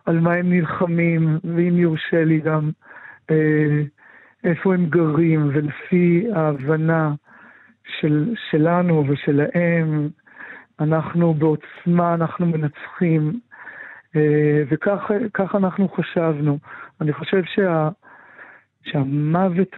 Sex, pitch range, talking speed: male, 155-185 Hz, 90 wpm